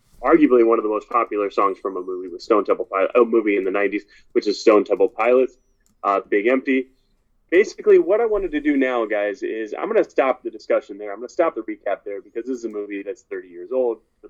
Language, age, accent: English, 30-49, American